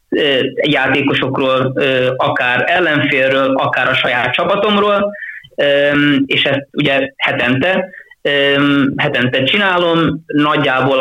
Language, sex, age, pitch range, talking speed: Hungarian, male, 20-39, 130-150 Hz, 75 wpm